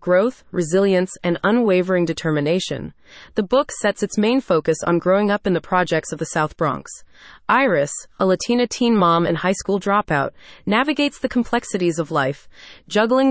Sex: female